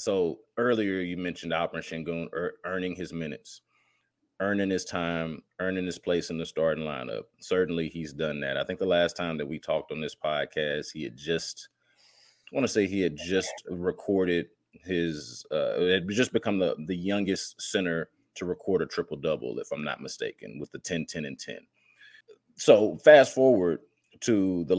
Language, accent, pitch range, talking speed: English, American, 85-105 Hz, 175 wpm